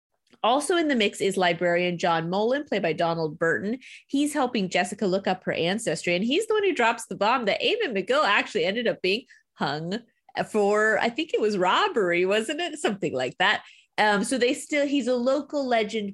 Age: 30-49